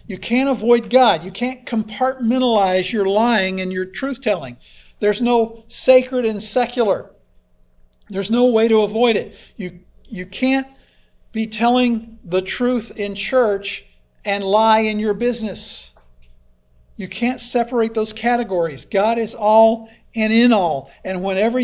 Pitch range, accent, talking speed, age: 180-230 Hz, American, 140 wpm, 50-69